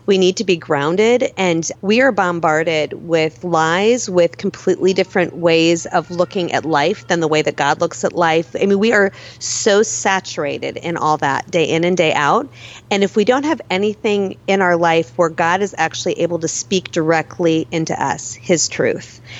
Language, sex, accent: English, female, American